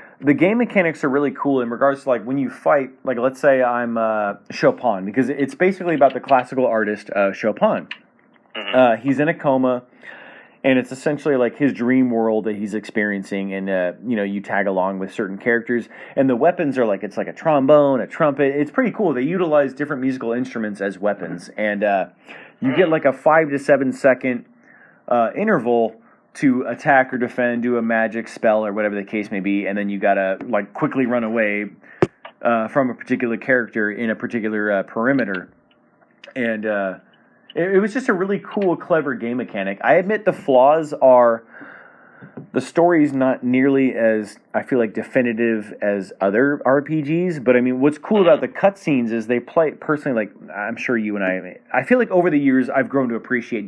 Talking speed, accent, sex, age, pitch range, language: 195 wpm, American, male, 30-49, 110-145 Hz, English